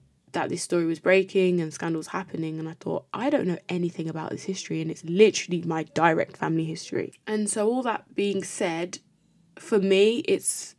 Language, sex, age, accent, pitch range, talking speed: English, female, 20-39, British, 165-215 Hz, 190 wpm